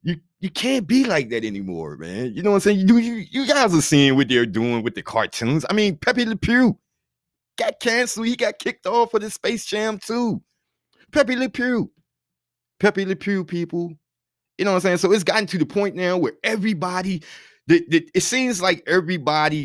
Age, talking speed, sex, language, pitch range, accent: 30-49, 200 wpm, male, English, 115-190 Hz, American